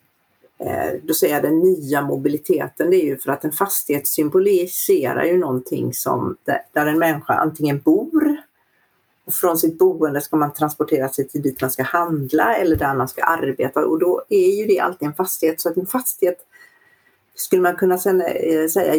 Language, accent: Swedish, native